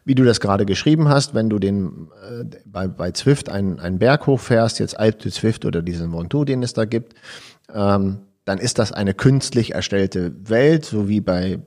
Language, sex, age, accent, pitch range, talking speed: German, male, 50-69, German, 100-145 Hz, 195 wpm